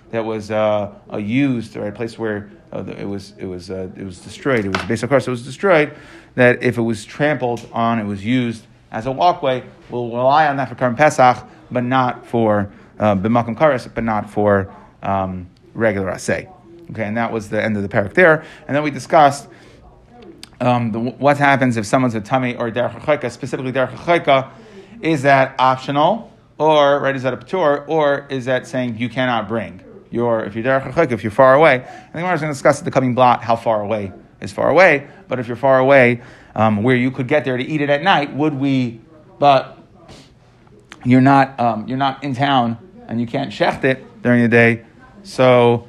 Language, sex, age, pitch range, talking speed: English, male, 30-49, 115-140 Hz, 205 wpm